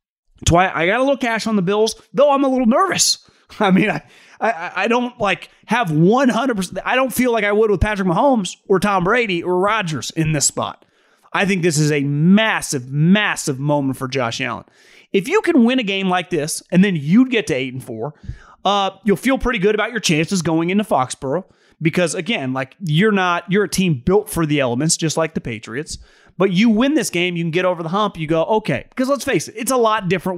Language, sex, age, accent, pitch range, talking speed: English, male, 30-49, American, 155-220 Hz, 225 wpm